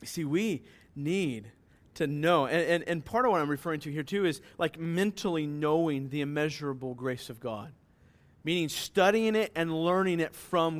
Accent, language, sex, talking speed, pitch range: American, English, male, 180 wpm, 140-180 Hz